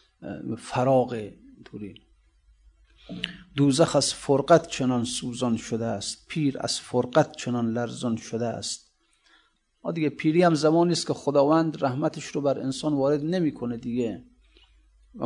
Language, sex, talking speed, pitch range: Persian, male, 130 wpm, 120-145 Hz